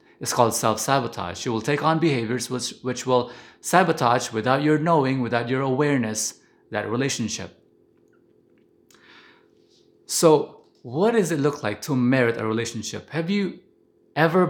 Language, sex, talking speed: English, male, 135 wpm